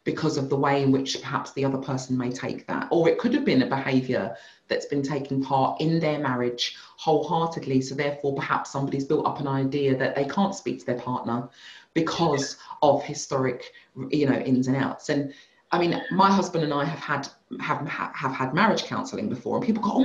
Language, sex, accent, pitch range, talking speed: English, female, British, 135-185 Hz, 200 wpm